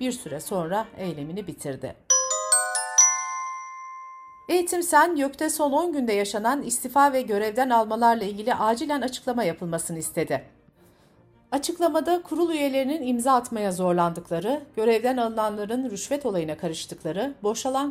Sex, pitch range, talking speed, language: female, 175-275 Hz, 105 wpm, Turkish